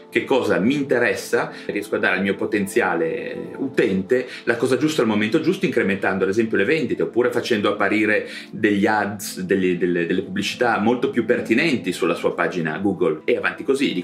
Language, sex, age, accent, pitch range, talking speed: Italian, male, 30-49, native, 100-155 Hz, 175 wpm